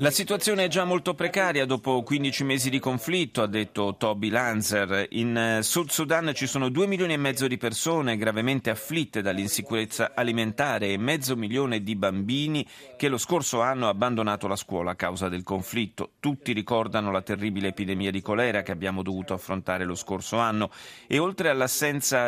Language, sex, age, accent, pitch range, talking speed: Italian, male, 40-59, native, 105-140 Hz, 170 wpm